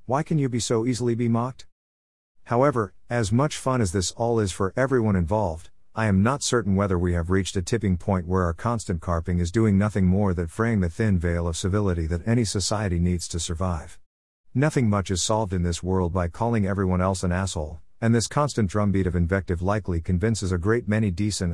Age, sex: 50-69, male